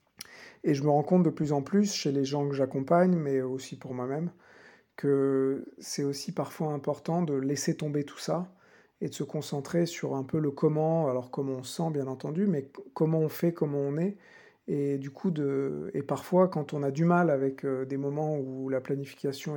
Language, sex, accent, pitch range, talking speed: French, male, French, 135-155 Hz, 210 wpm